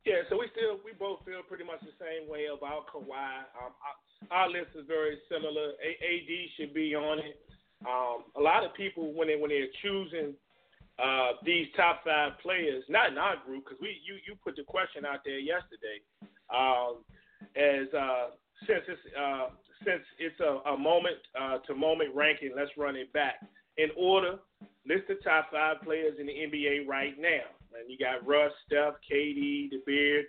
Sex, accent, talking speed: male, American, 185 wpm